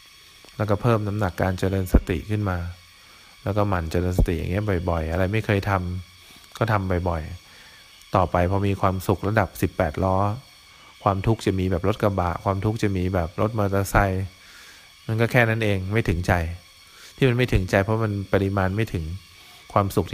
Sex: male